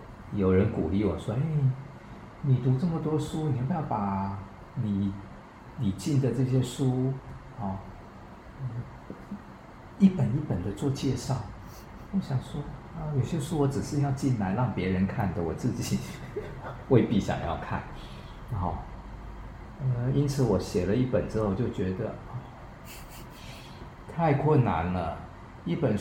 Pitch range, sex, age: 100-135 Hz, male, 50-69